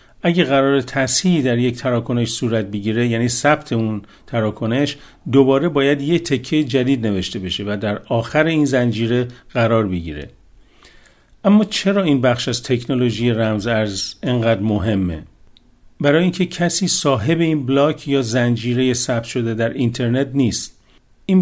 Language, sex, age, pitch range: Persian, male, 50-69, 115-145 Hz